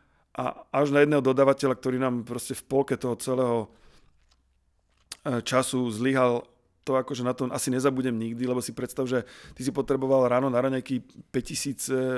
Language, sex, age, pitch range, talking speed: Slovak, male, 40-59, 120-135 Hz, 155 wpm